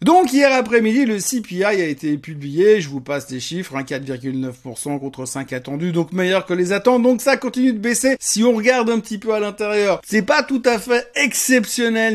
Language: French